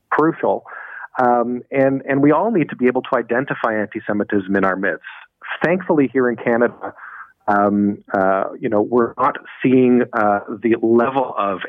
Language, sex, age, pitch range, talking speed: English, male, 30-49, 105-130 Hz, 160 wpm